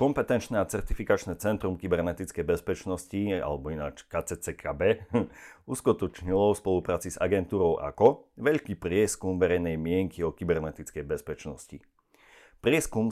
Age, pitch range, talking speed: 40-59, 80-100 Hz, 105 wpm